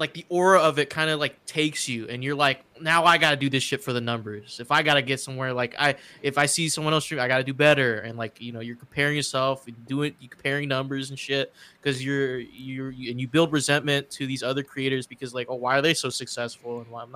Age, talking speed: 20-39, 265 wpm